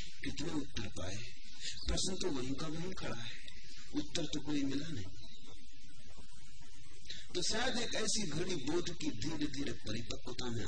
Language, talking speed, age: Hindi, 145 wpm, 40-59